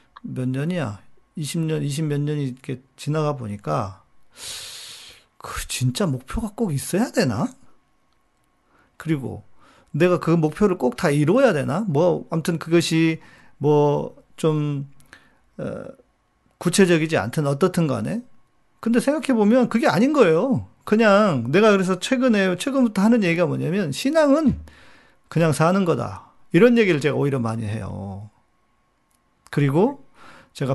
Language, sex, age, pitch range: Korean, male, 40-59, 135-195 Hz